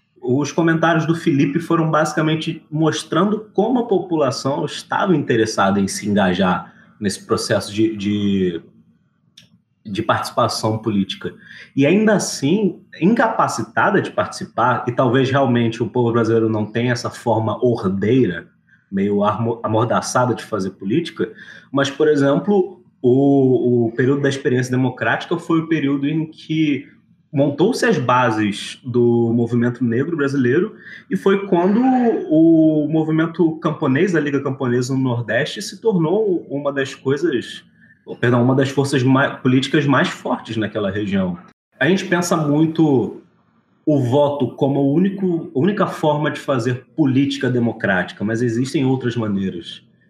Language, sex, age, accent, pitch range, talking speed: Portuguese, male, 20-39, Brazilian, 120-165 Hz, 130 wpm